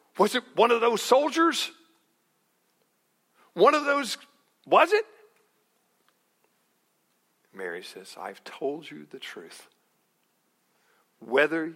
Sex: male